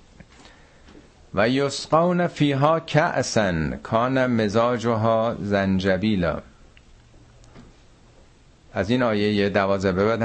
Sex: male